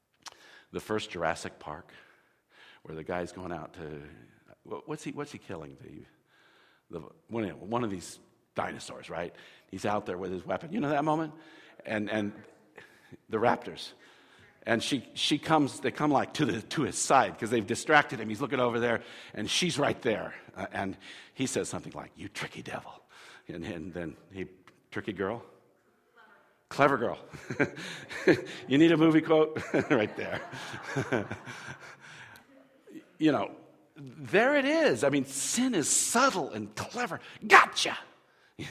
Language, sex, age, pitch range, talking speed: English, male, 50-69, 110-160 Hz, 150 wpm